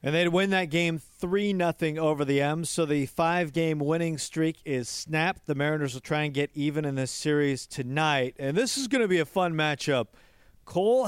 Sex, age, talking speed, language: male, 40-59, 205 wpm, English